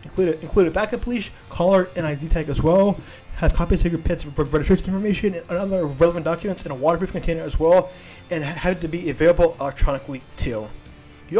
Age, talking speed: 20-39, 195 wpm